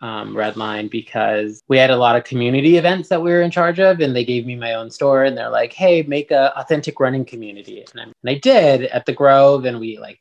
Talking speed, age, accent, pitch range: 245 wpm, 20-39, American, 115-140 Hz